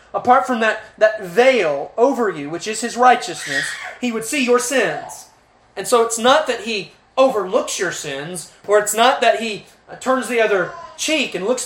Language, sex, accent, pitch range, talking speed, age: English, male, American, 185-255 Hz, 185 wpm, 30-49